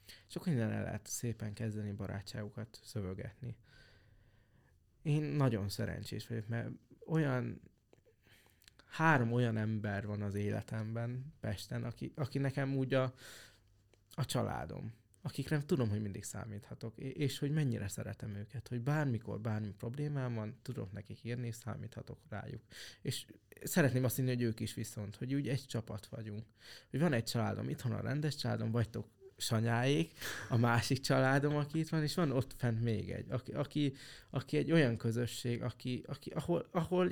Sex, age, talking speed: male, 20-39, 150 wpm